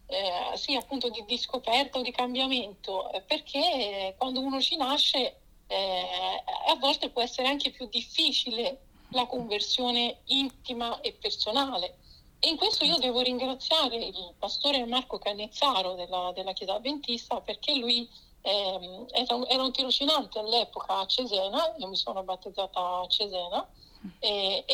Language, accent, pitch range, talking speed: Italian, native, 200-275 Hz, 145 wpm